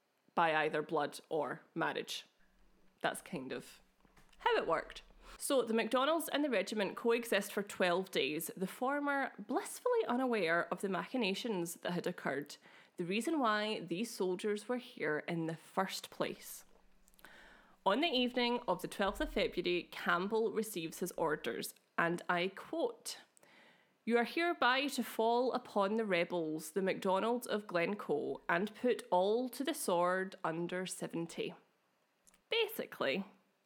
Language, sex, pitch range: English, female, 175-245 Hz